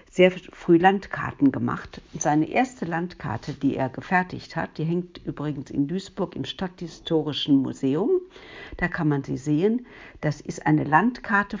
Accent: German